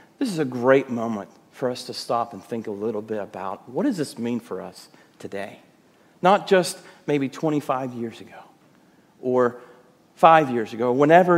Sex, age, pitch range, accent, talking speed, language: male, 40-59, 125-175 Hz, American, 175 wpm, English